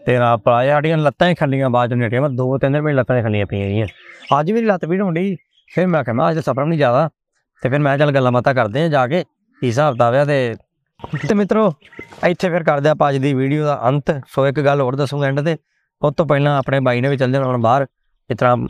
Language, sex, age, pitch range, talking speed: Punjabi, male, 20-39, 125-160 Hz, 230 wpm